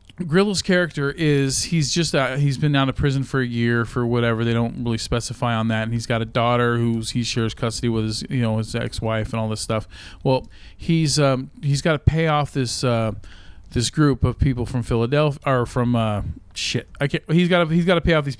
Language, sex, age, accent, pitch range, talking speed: English, male, 40-59, American, 110-140 Hz, 220 wpm